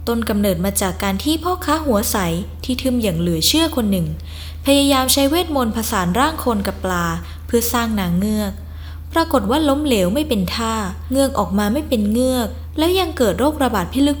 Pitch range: 175-270 Hz